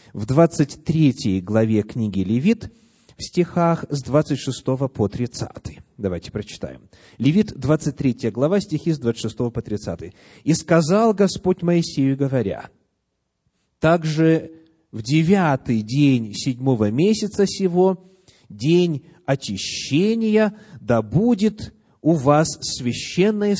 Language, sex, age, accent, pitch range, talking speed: Russian, male, 30-49, native, 115-170 Hz, 100 wpm